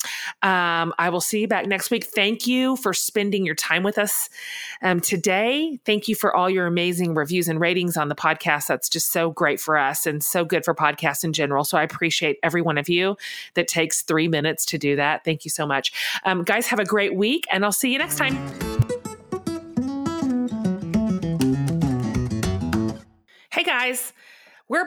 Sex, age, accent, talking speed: female, 30-49, American, 185 wpm